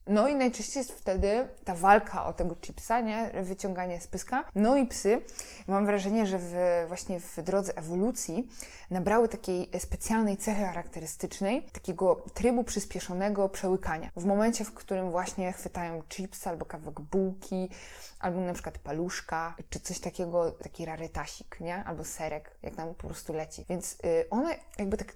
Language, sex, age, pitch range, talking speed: Polish, female, 20-39, 175-210 Hz, 155 wpm